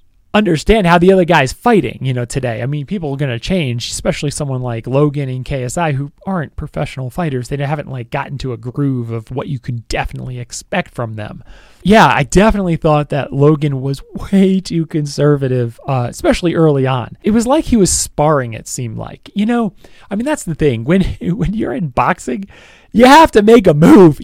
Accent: American